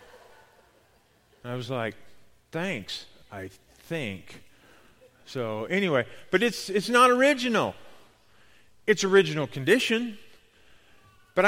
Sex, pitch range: male, 165-230 Hz